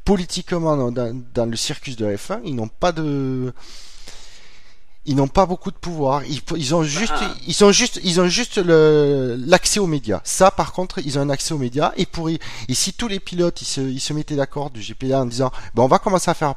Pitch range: 125-170 Hz